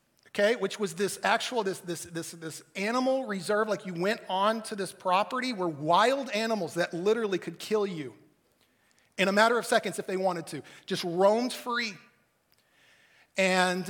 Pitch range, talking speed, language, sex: 185-230 Hz, 170 wpm, English, male